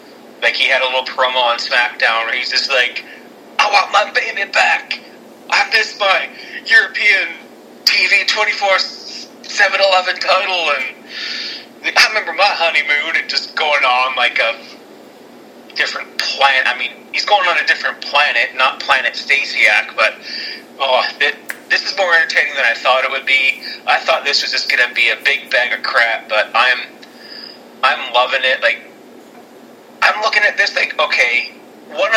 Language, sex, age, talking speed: English, male, 30-49, 160 wpm